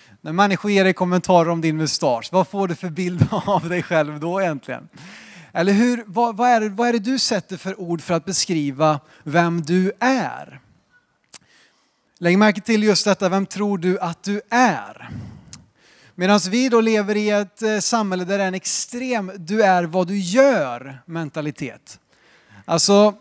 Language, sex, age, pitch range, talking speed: Swedish, male, 30-49, 155-210 Hz, 170 wpm